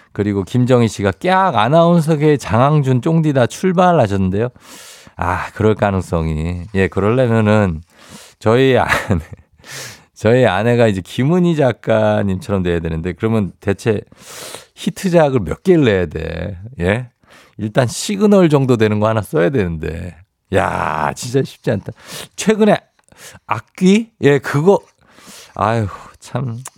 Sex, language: male, Korean